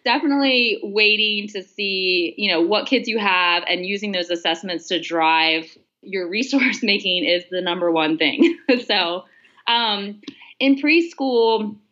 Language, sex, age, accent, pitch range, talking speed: English, female, 20-39, American, 175-225 Hz, 140 wpm